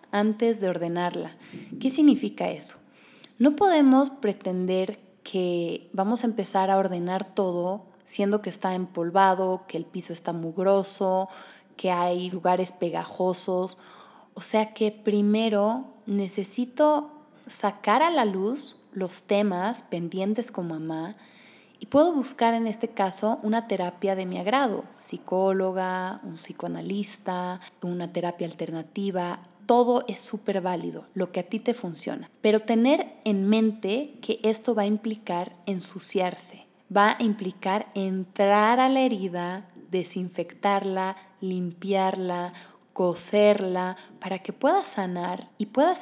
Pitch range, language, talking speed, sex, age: 185-230 Hz, Spanish, 125 wpm, female, 20-39